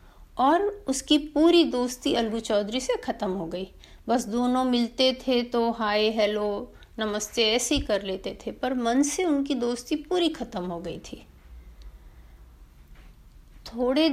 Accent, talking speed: native, 140 wpm